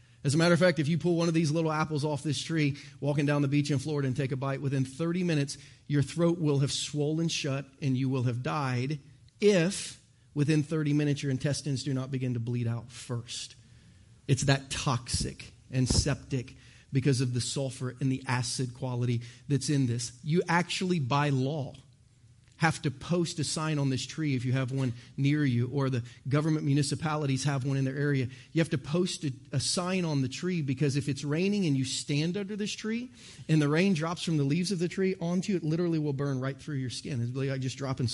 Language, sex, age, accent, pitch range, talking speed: English, male, 40-59, American, 130-160 Hz, 220 wpm